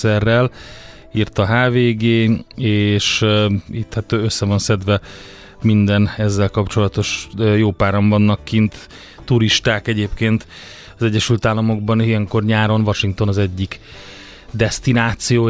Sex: male